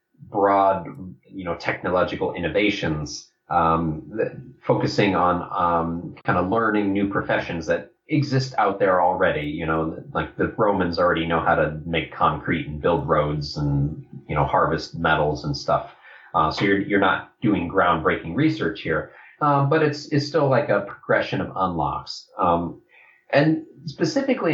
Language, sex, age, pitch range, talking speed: English, male, 30-49, 85-130 Hz, 150 wpm